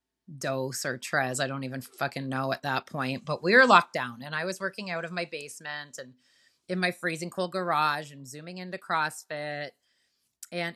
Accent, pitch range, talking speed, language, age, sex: American, 140-185 Hz, 195 wpm, English, 30-49, female